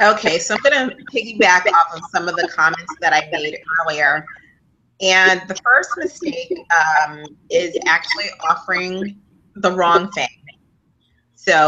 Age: 30-49